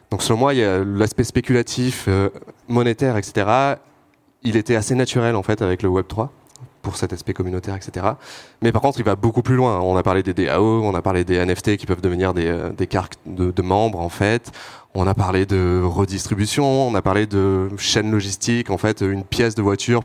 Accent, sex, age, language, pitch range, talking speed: French, male, 20-39, French, 95-115 Hz, 215 wpm